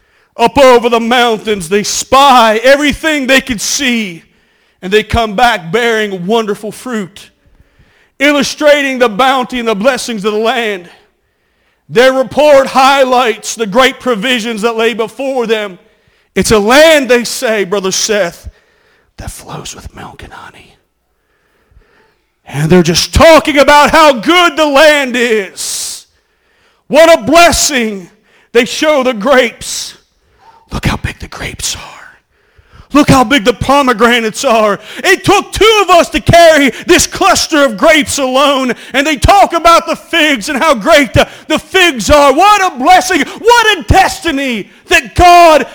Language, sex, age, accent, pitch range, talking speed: English, male, 40-59, American, 220-310 Hz, 145 wpm